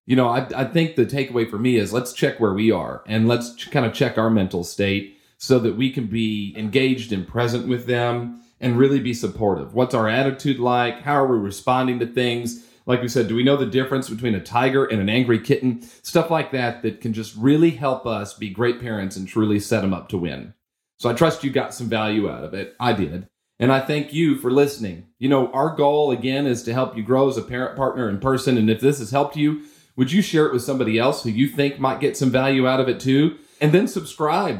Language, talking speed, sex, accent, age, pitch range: English, 250 wpm, male, American, 40-59, 115-140 Hz